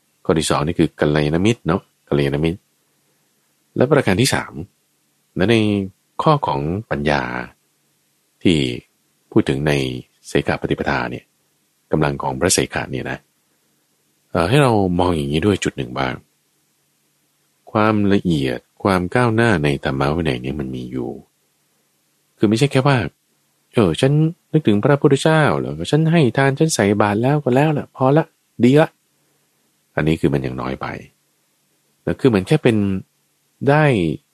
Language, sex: Thai, male